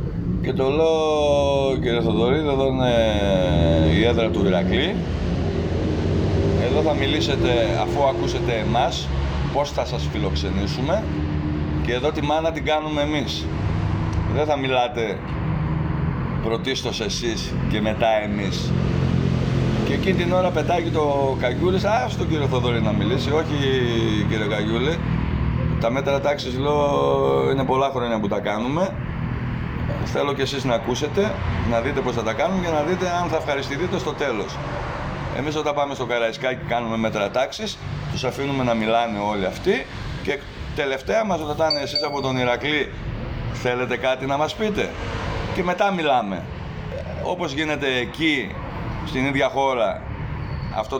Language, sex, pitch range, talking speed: Greek, male, 105-150 Hz, 140 wpm